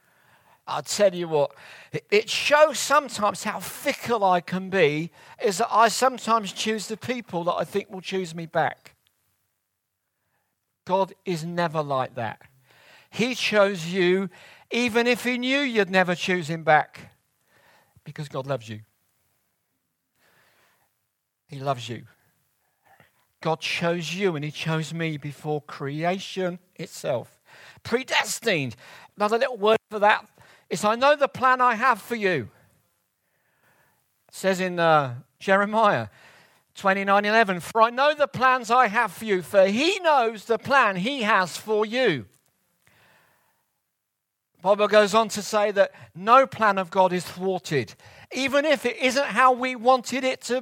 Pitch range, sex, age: 160-230 Hz, male, 50-69